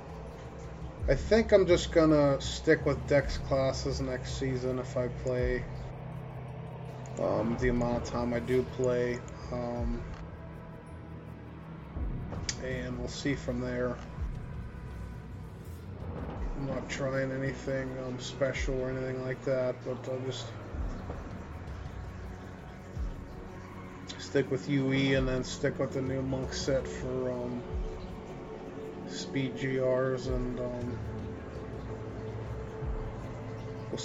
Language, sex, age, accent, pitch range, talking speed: English, male, 20-39, American, 115-140 Hz, 105 wpm